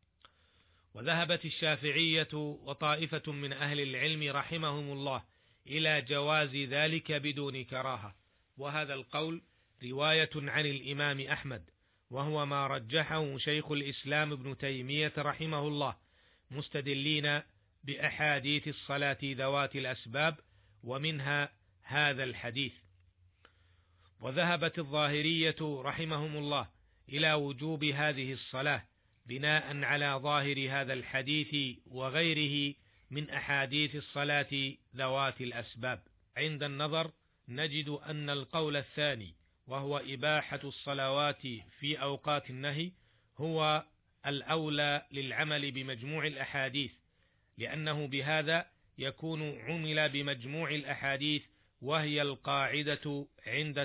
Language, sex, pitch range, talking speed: Arabic, male, 130-150 Hz, 90 wpm